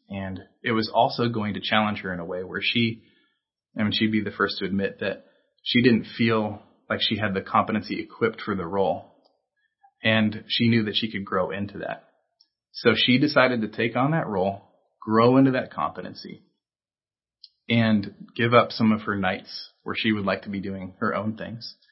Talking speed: 195 wpm